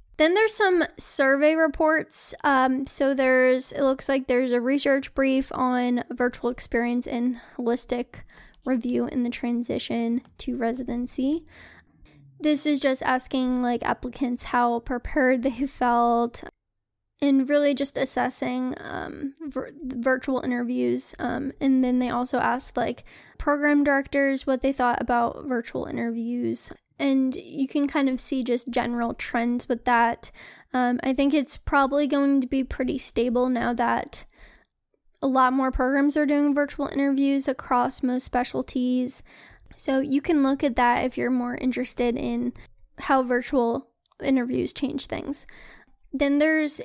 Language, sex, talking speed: English, female, 140 wpm